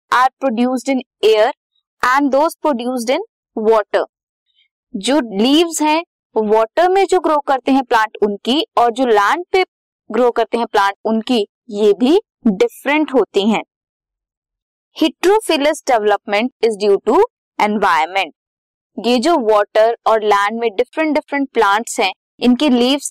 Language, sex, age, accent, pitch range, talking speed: Hindi, female, 20-39, native, 220-310 Hz, 135 wpm